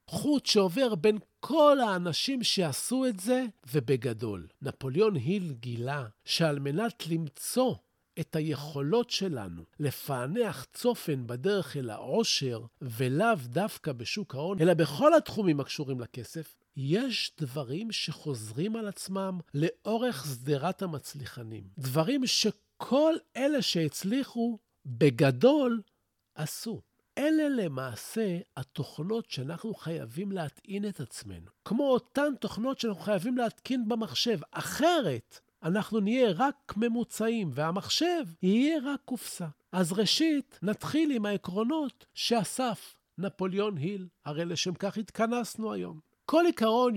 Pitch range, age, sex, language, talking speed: 145-230 Hz, 50-69, male, Hebrew, 110 wpm